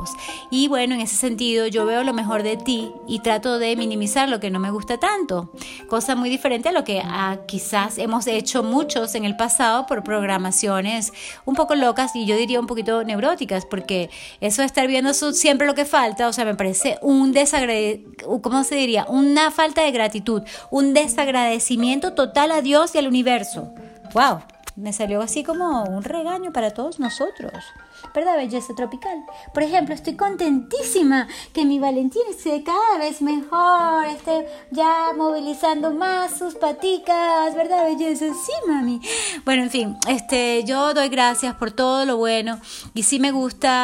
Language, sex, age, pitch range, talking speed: English, female, 30-49, 225-295 Hz, 170 wpm